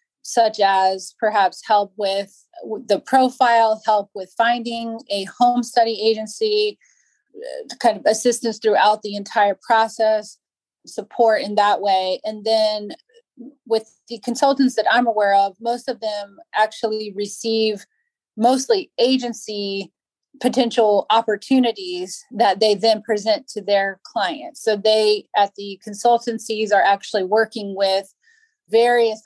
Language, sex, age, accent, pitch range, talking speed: English, female, 30-49, American, 200-240 Hz, 125 wpm